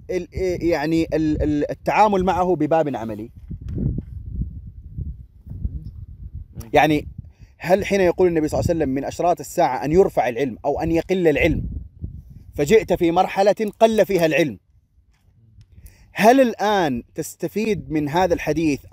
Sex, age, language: male, 30-49, Arabic